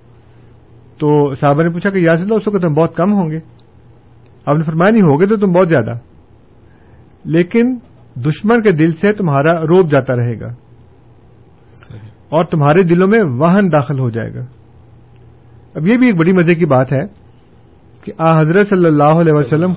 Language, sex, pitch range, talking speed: Urdu, male, 120-180 Hz, 175 wpm